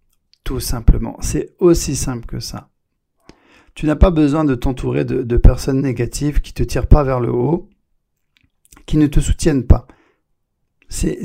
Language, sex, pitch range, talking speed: French, male, 120-150 Hz, 165 wpm